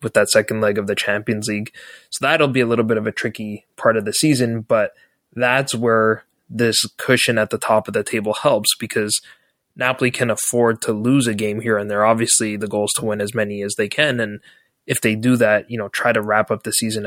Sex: male